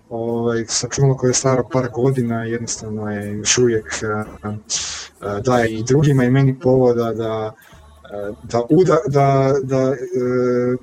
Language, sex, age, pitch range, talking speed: Croatian, male, 20-39, 110-130 Hz, 140 wpm